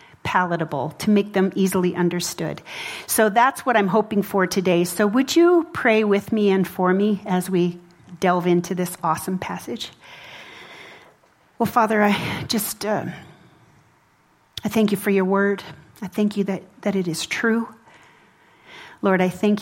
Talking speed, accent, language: 160 wpm, American, English